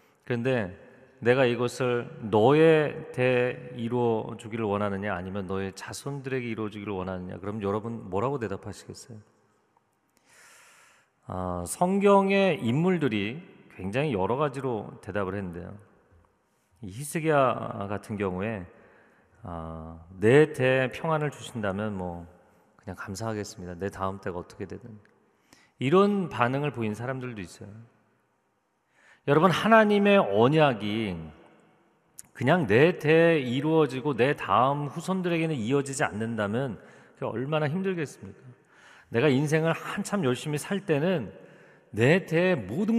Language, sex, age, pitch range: Korean, male, 40-59, 105-155 Hz